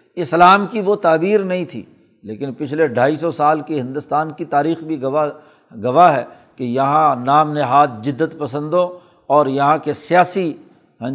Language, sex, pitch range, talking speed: Urdu, male, 145-180 Hz, 160 wpm